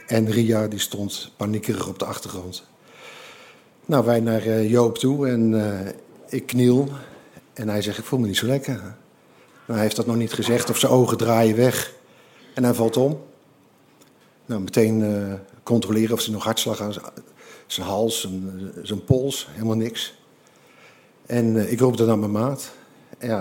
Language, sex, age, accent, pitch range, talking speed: Dutch, male, 50-69, Dutch, 110-125 Hz, 170 wpm